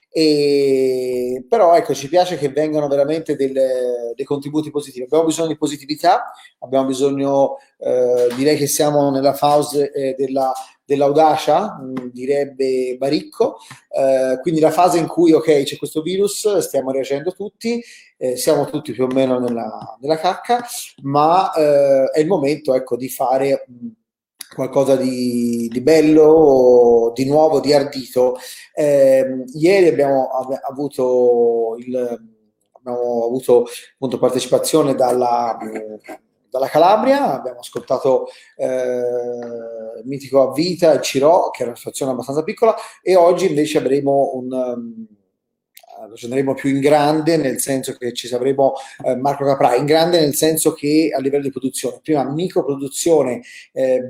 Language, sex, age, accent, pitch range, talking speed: Italian, male, 30-49, native, 130-155 Hz, 140 wpm